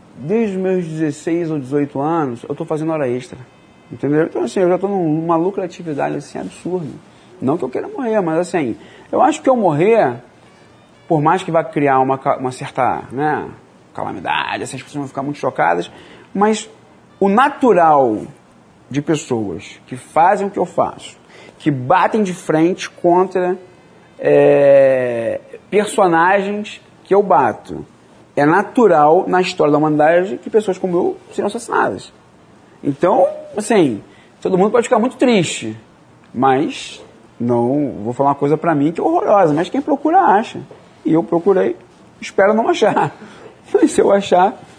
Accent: Brazilian